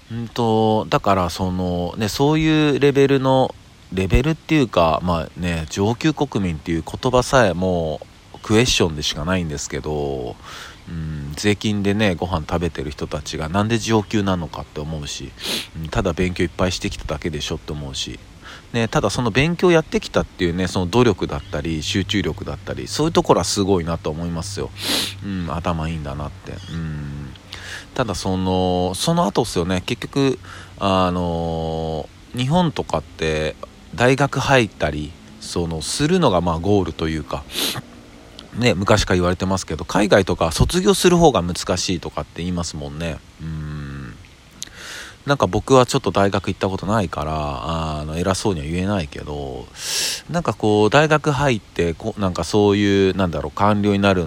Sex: male